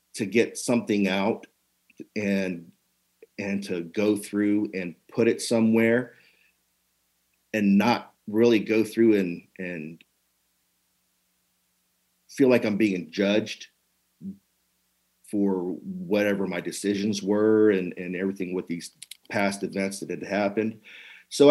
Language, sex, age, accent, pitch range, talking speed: English, male, 50-69, American, 90-115 Hz, 115 wpm